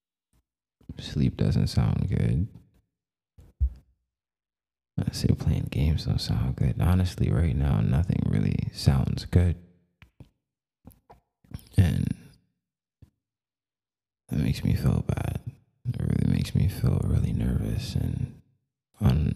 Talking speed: 100 wpm